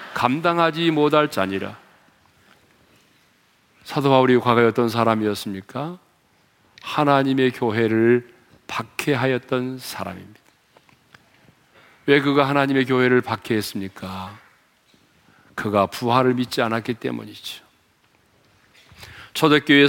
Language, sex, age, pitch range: Korean, male, 40-59, 120-165 Hz